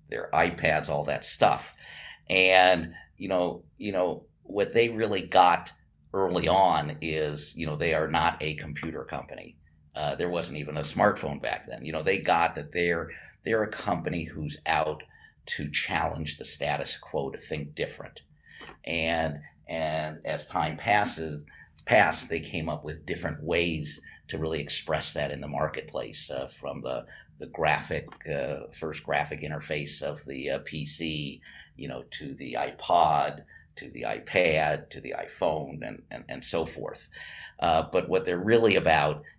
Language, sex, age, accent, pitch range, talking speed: English, male, 50-69, American, 75-85 Hz, 160 wpm